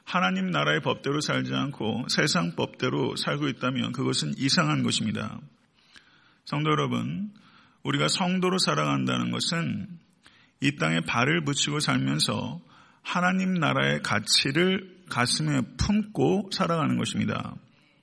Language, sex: Korean, male